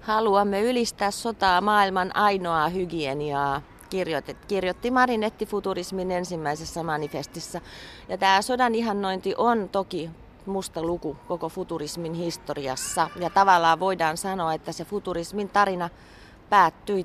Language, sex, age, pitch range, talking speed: Finnish, female, 30-49, 160-205 Hz, 110 wpm